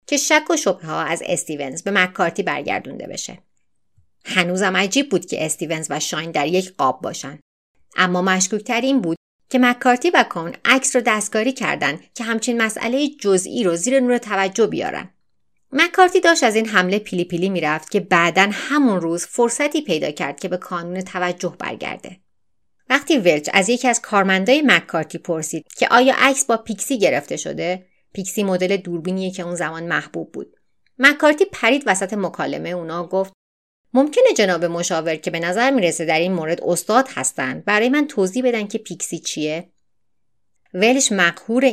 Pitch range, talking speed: 175-250 Hz, 160 wpm